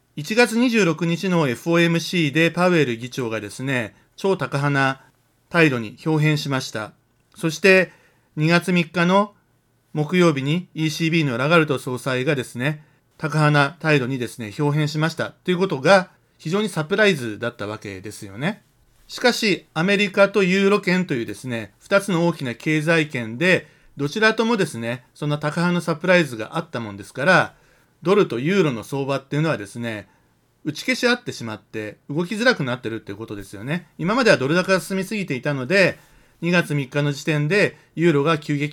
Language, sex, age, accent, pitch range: Japanese, male, 40-59, native, 125-175 Hz